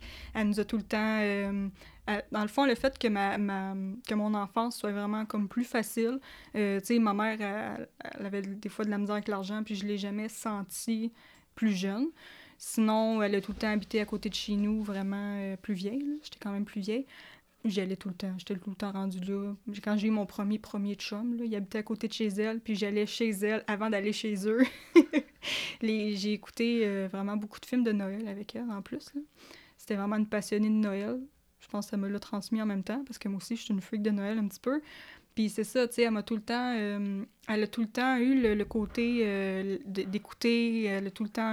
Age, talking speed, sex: 20-39, 250 wpm, female